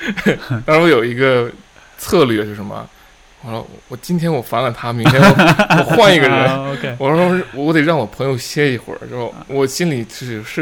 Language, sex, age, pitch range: Chinese, male, 20-39, 105-140 Hz